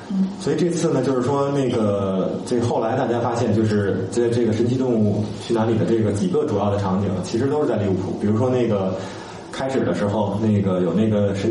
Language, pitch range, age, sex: Chinese, 100-120 Hz, 20-39, male